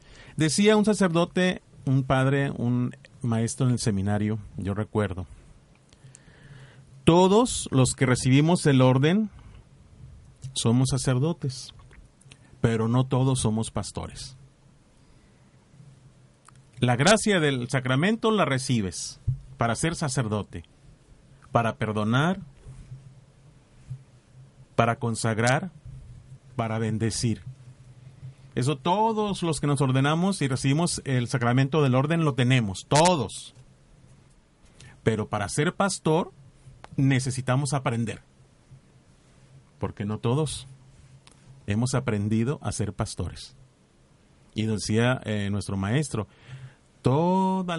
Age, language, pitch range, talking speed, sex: 40-59, Spanish, 115-145 Hz, 95 wpm, male